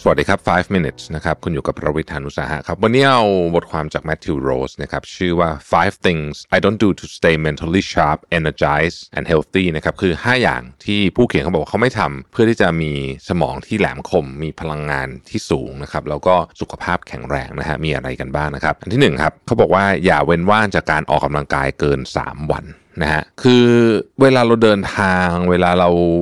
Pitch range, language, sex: 75-105 Hz, Thai, male